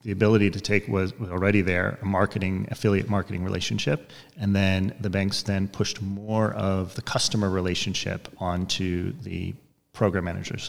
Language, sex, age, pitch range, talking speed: English, male, 30-49, 90-105 Hz, 150 wpm